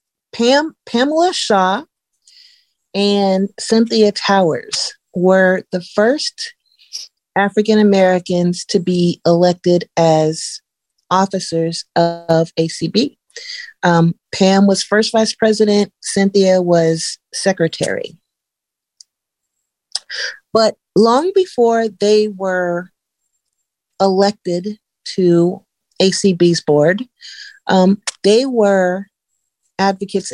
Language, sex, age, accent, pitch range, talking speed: English, female, 40-59, American, 175-220 Hz, 80 wpm